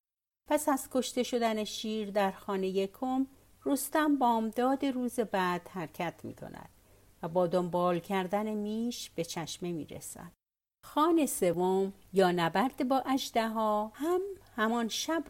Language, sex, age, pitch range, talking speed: Persian, female, 60-79, 175-255 Hz, 130 wpm